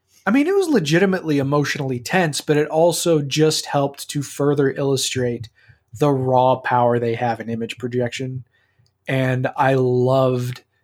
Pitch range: 130-155 Hz